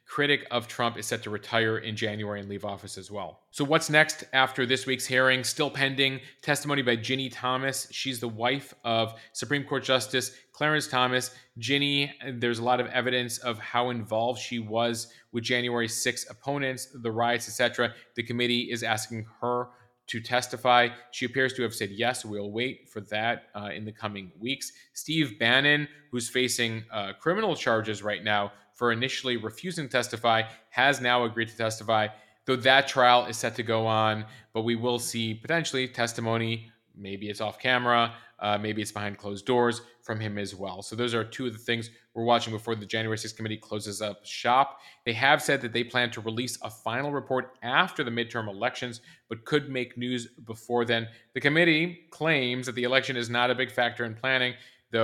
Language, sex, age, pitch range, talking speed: English, male, 30-49, 110-130 Hz, 190 wpm